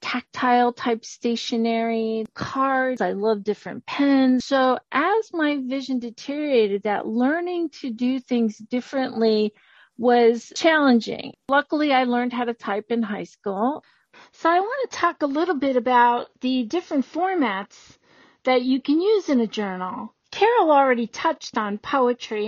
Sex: female